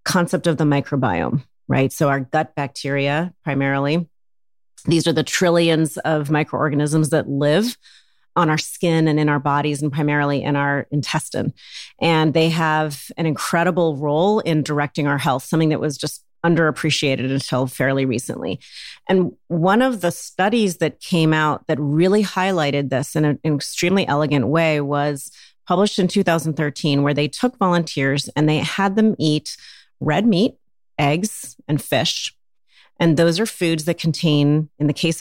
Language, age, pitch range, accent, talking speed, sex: English, 30-49, 140-175 Hz, American, 155 wpm, female